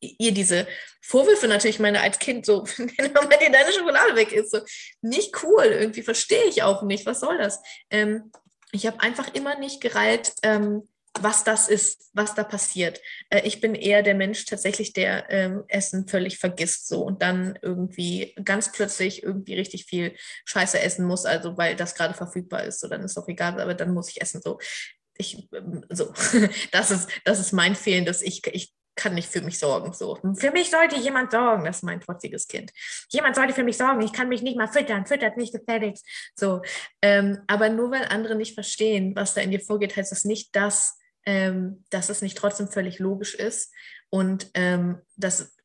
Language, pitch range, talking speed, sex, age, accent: German, 195-230 Hz, 195 wpm, female, 20-39, German